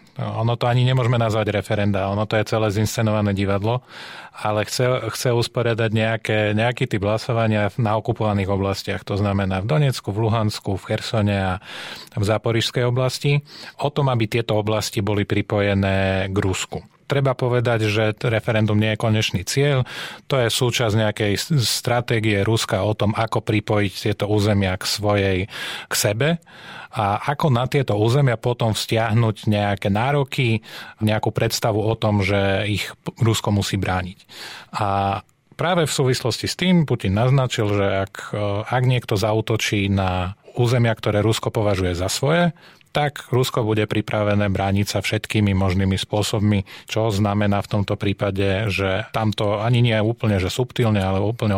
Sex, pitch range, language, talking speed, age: male, 100-120 Hz, Slovak, 150 wpm, 30-49